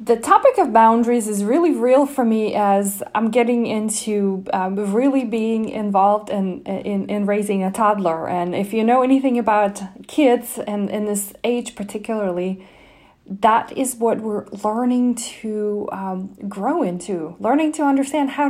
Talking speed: 155 wpm